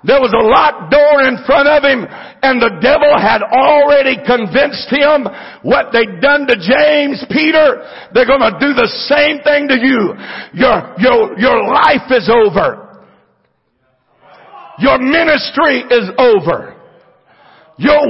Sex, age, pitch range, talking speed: male, 60-79, 255-320 Hz, 140 wpm